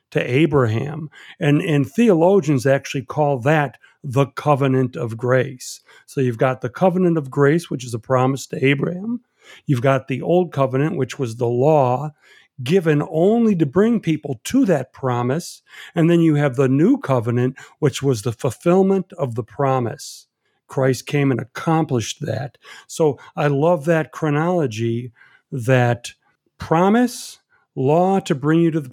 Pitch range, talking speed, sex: 130-165 Hz, 155 wpm, male